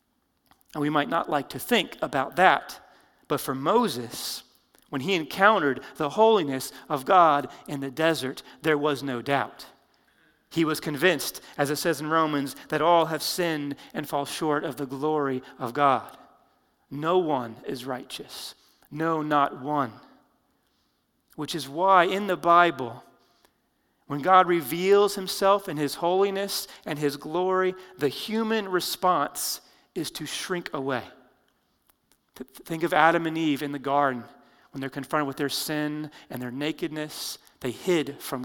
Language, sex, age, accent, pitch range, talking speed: English, male, 40-59, American, 145-170 Hz, 150 wpm